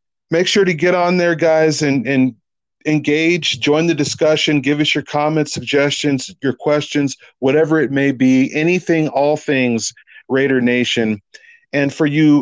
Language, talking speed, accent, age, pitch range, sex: English, 155 wpm, American, 40-59, 130-155 Hz, male